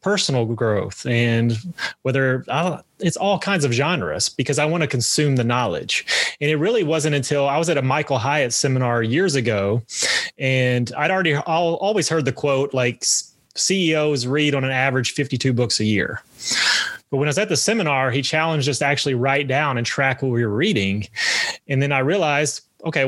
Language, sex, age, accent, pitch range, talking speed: English, male, 30-49, American, 120-150 Hz, 185 wpm